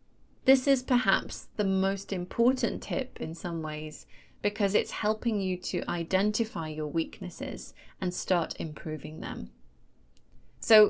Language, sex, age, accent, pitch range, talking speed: English, female, 30-49, British, 170-225 Hz, 125 wpm